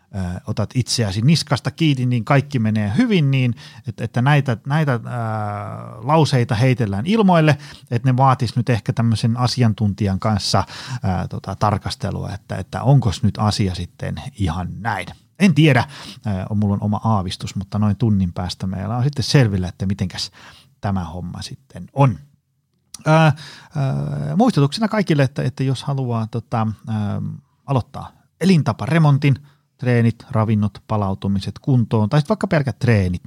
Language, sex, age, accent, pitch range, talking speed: Finnish, male, 30-49, native, 100-140 Hz, 145 wpm